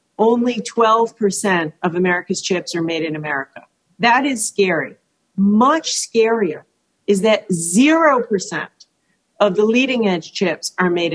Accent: American